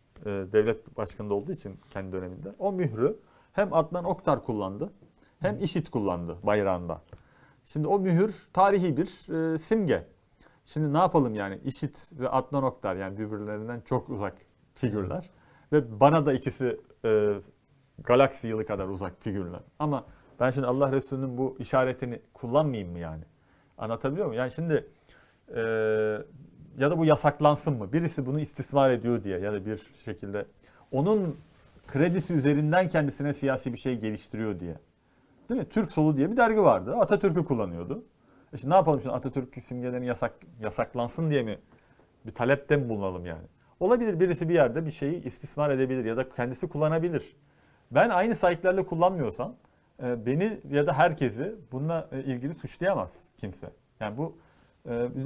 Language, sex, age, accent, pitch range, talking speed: Turkish, male, 40-59, native, 110-155 Hz, 150 wpm